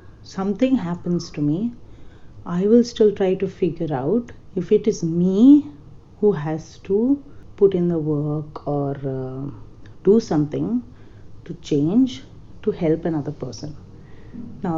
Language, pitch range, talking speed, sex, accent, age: English, 150-190 Hz, 135 wpm, female, Indian, 30-49